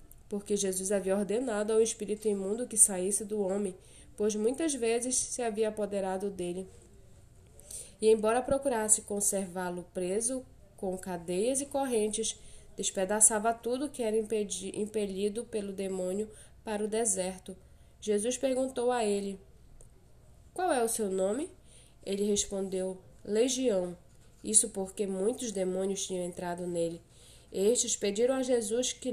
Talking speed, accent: 125 wpm, Brazilian